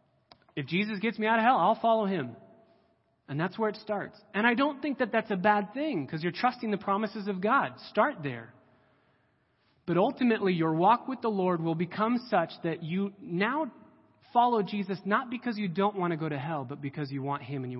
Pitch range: 150-225 Hz